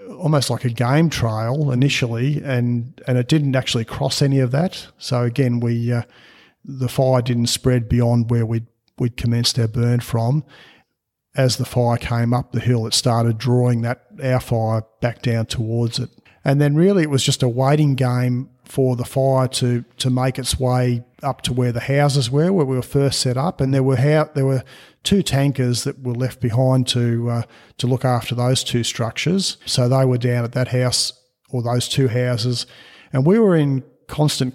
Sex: male